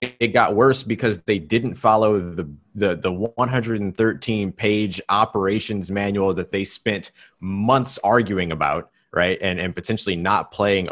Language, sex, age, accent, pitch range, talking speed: English, male, 30-49, American, 95-125 Hz, 135 wpm